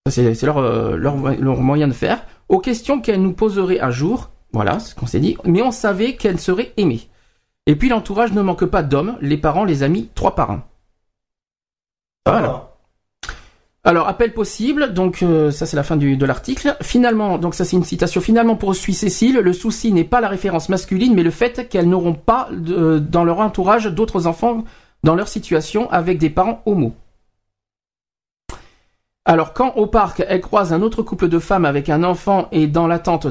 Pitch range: 150-205 Hz